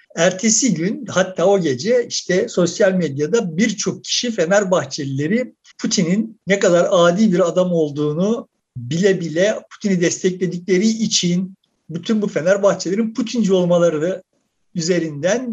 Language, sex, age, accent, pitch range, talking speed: Turkish, male, 50-69, native, 185-240 Hz, 110 wpm